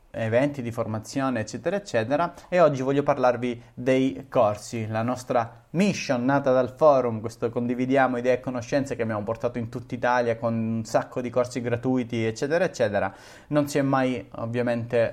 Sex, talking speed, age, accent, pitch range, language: male, 165 wpm, 30-49, native, 115-140 Hz, Italian